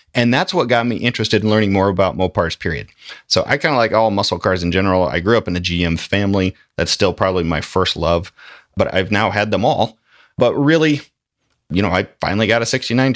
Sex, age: male, 30-49